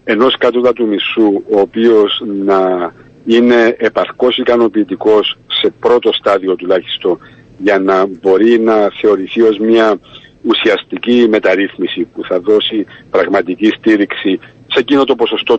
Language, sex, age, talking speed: Greek, male, 60-79, 120 wpm